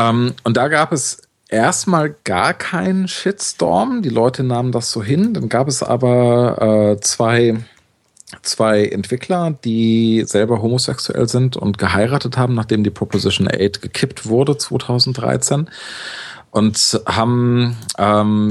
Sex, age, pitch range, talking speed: male, 40-59, 100-125 Hz, 125 wpm